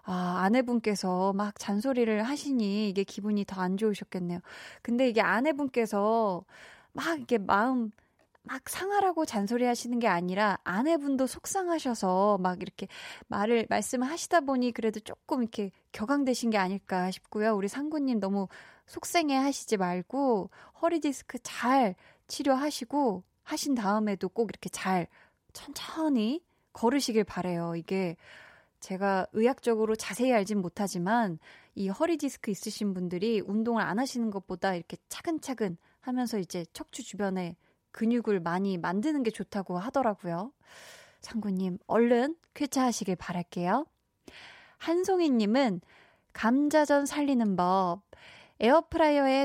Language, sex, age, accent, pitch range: Korean, female, 20-39, native, 195-270 Hz